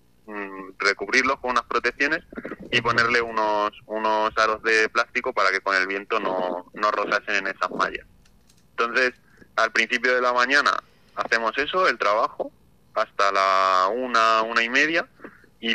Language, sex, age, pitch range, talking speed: Spanish, male, 20-39, 100-120 Hz, 150 wpm